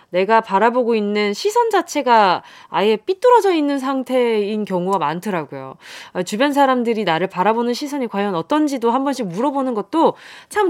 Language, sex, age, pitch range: Korean, female, 20-39, 210-320 Hz